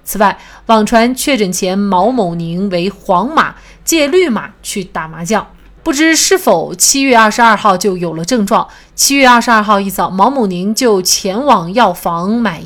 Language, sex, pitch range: Chinese, female, 190-250 Hz